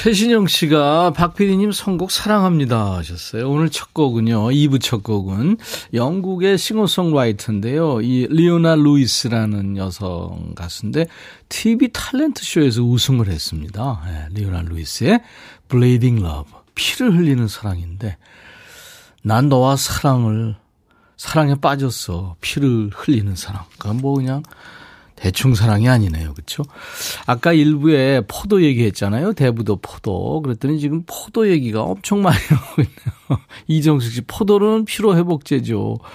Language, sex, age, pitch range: Korean, male, 40-59, 105-165 Hz